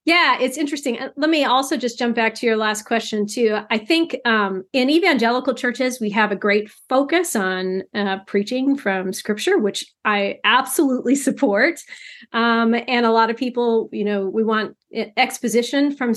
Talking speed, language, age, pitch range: 170 wpm, English, 30-49, 215-275 Hz